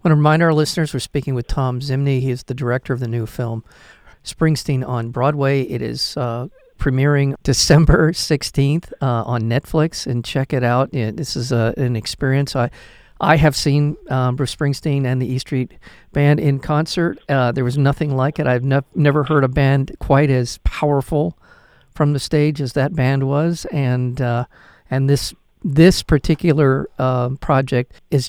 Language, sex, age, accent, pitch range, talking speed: English, male, 50-69, American, 130-160 Hz, 180 wpm